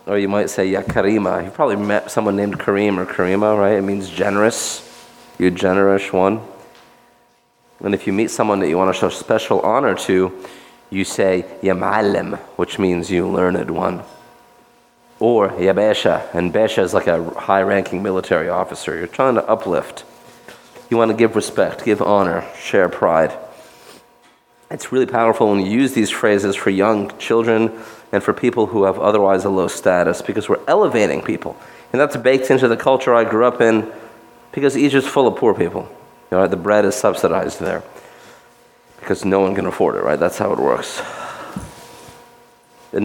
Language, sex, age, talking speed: English, male, 30-49, 170 wpm